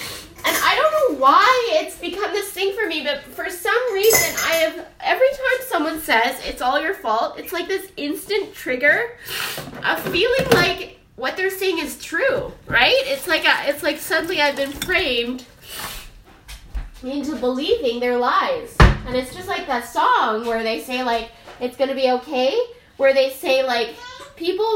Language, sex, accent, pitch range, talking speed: English, female, American, 255-390 Hz, 170 wpm